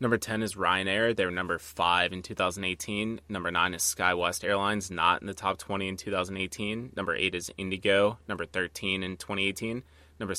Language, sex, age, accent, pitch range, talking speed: English, male, 20-39, American, 85-100 Hz, 180 wpm